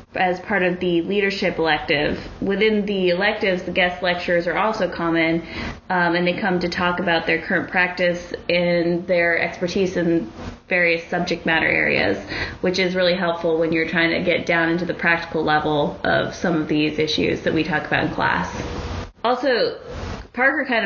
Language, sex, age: English, female, 20-39